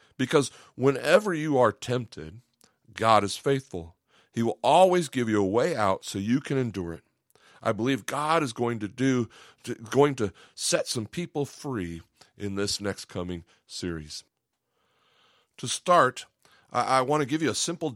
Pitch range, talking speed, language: 95-135 Hz, 165 wpm, English